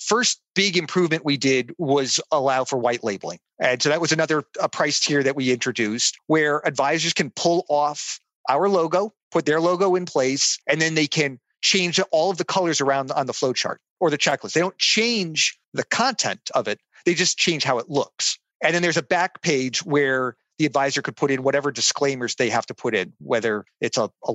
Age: 40-59